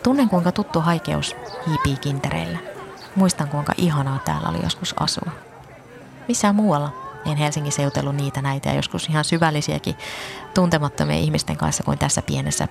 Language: Finnish